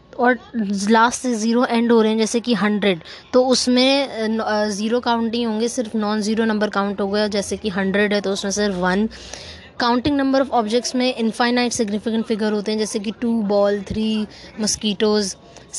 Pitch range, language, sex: 195-225 Hz, English, female